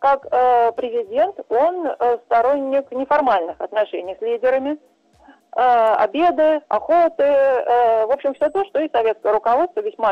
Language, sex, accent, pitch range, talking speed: Russian, female, native, 220-295 Hz, 115 wpm